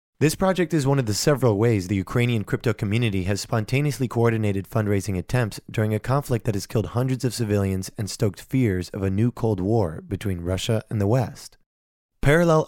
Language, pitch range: English, 100-130 Hz